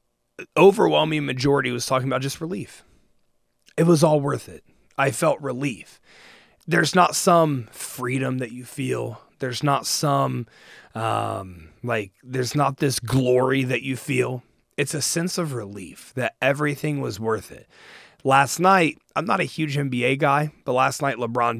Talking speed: 155 wpm